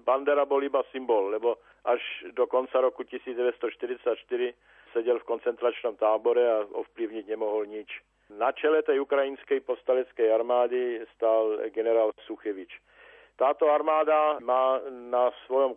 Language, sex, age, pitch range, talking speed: Slovak, male, 50-69, 125-150 Hz, 120 wpm